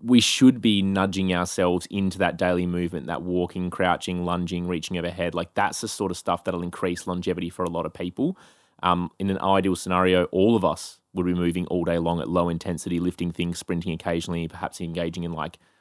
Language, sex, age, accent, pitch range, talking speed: English, male, 20-39, Australian, 85-95 Hz, 205 wpm